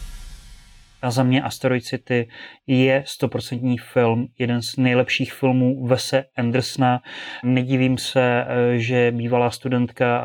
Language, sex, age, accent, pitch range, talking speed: Czech, male, 30-49, native, 115-130 Hz, 110 wpm